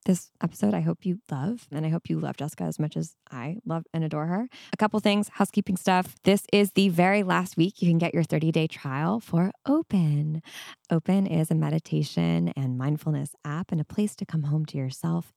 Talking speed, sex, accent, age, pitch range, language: 210 wpm, female, American, 20-39, 155-215 Hz, English